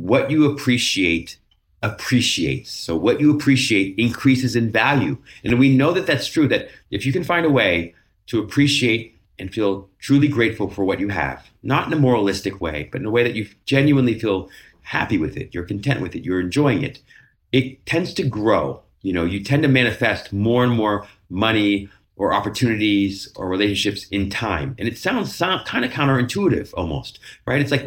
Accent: American